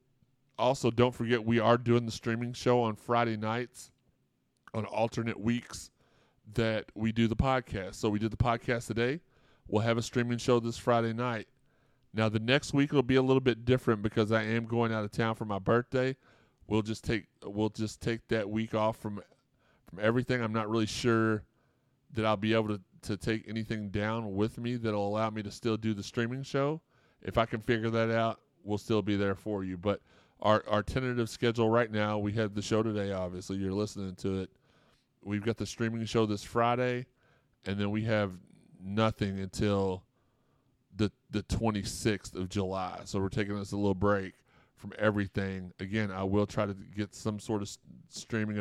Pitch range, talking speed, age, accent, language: 100-120 Hz, 195 wpm, 30-49, American, English